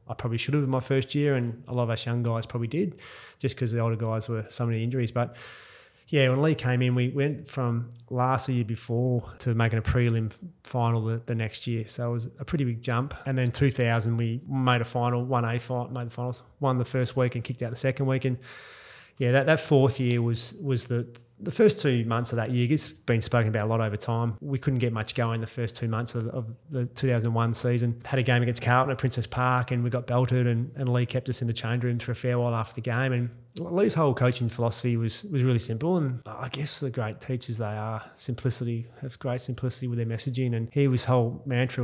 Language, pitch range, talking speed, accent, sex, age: English, 115-130 Hz, 245 wpm, Australian, male, 20-39